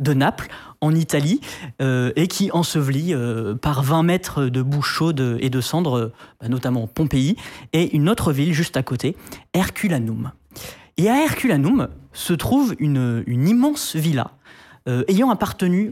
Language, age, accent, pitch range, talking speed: French, 20-39, French, 125-175 Hz, 155 wpm